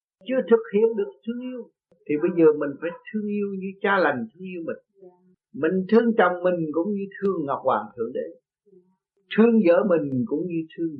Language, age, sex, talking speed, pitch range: Vietnamese, 60-79, male, 195 wpm, 175-240 Hz